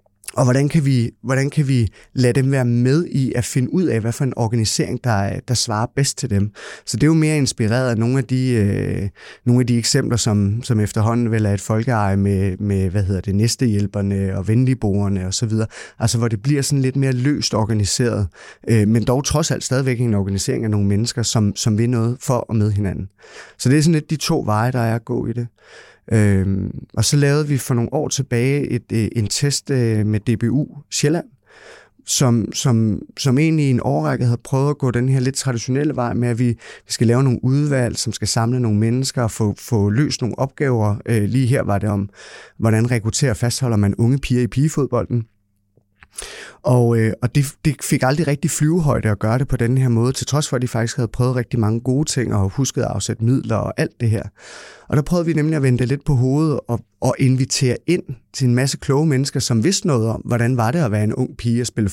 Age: 30-49